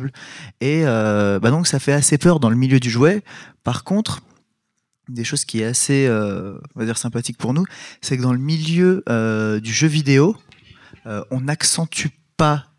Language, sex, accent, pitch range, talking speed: French, male, French, 120-155 Hz, 190 wpm